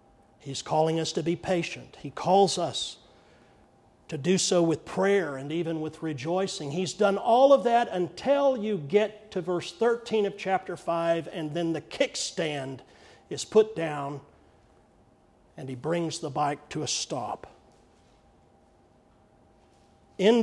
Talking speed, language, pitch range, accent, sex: 140 wpm, English, 155-200 Hz, American, male